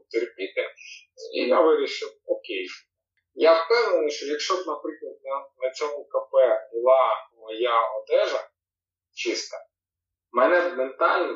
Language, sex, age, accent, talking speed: Ukrainian, male, 20-39, native, 110 wpm